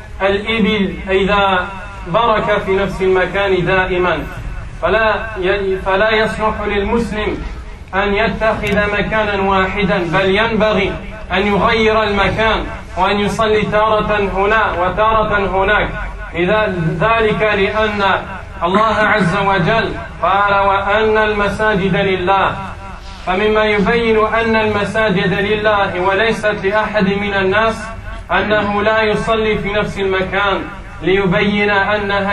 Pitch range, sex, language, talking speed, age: 185-210 Hz, male, French, 100 wpm, 20-39